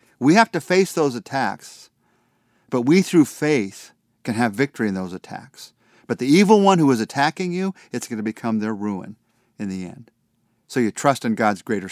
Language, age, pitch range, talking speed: English, 50-69, 110-140 Hz, 190 wpm